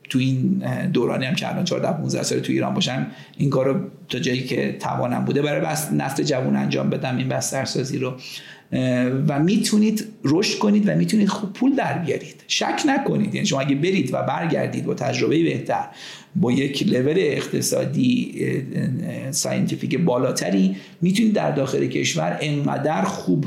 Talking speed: 160 wpm